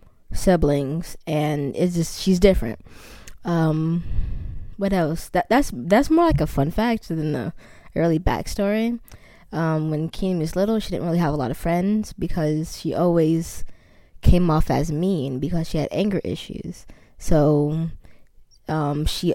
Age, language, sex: 20-39, English, female